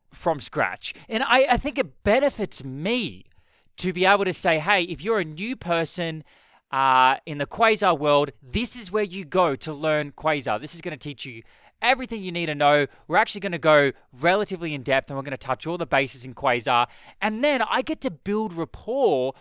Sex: male